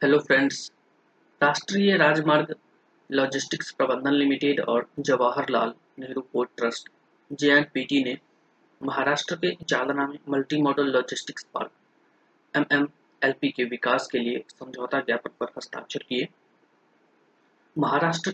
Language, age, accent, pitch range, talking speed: Hindi, 20-39, native, 130-145 Hz, 50 wpm